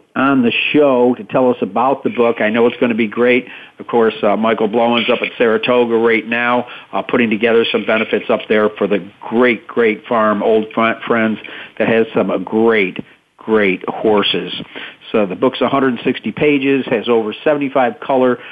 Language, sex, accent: English, male, American